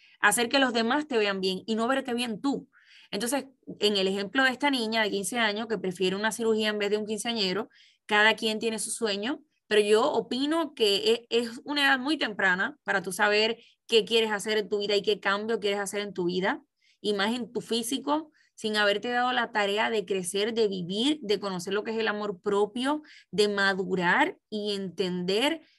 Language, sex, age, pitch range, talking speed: Spanish, female, 20-39, 205-255 Hz, 205 wpm